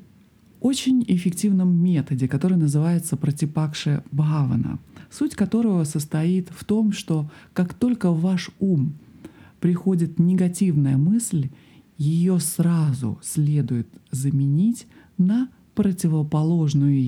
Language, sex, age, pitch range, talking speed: Russian, male, 40-59, 140-185 Hz, 95 wpm